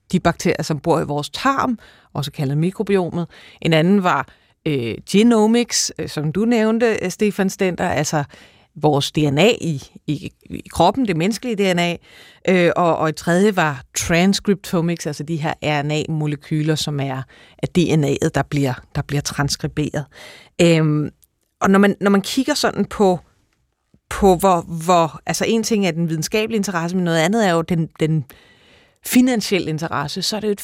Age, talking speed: 30-49, 160 wpm